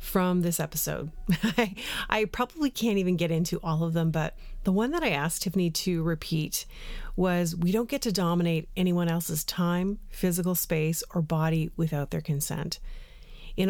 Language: English